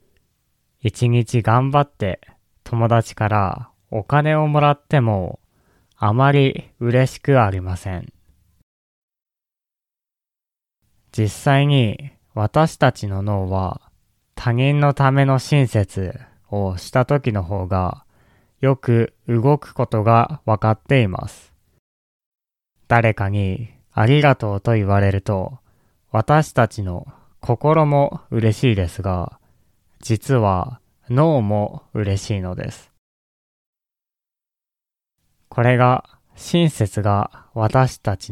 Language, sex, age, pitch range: Japanese, male, 20-39, 100-135 Hz